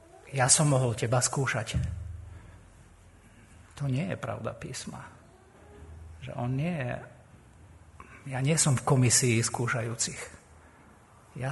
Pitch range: 105-140 Hz